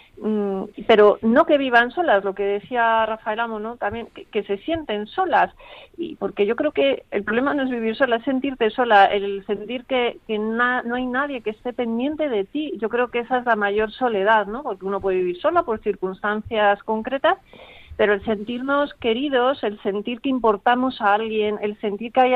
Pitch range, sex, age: 205-255 Hz, female, 40-59